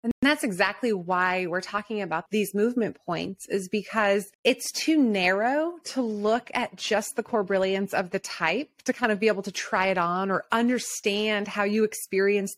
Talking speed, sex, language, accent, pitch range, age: 185 wpm, female, English, American, 195-250 Hz, 30-49